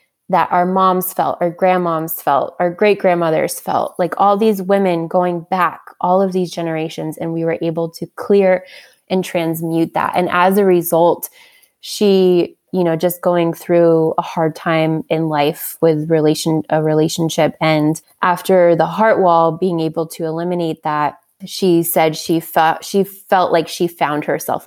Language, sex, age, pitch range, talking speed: English, female, 20-39, 160-185 Hz, 170 wpm